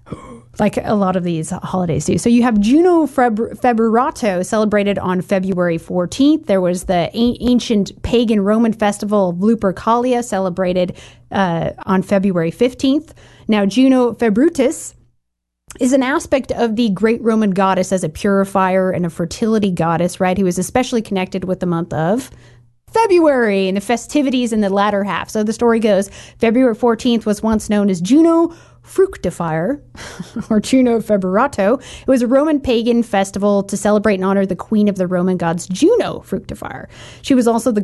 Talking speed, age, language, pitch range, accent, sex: 165 wpm, 30-49, English, 185-235 Hz, American, female